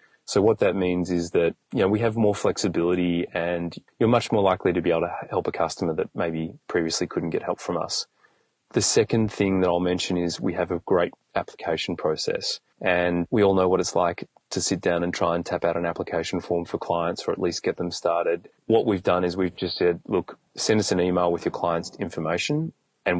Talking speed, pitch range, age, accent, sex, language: 230 wpm, 85-95 Hz, 30-49, Australian, male, English